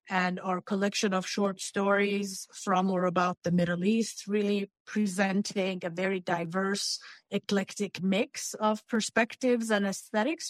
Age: 30-49